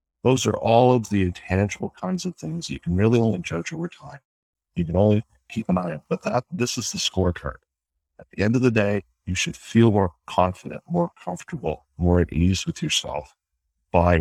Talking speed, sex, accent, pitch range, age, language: 205 wpm, male, American, 80-110 Hz, 60-79, English